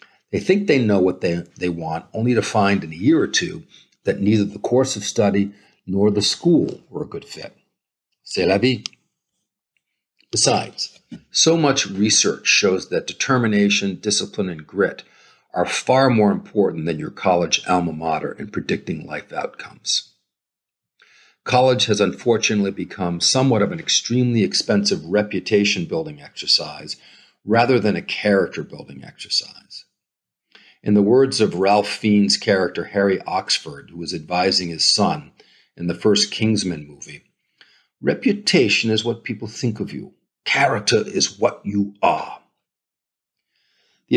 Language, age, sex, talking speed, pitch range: English, 50-69, male, 140 wpm, 90-110 Hz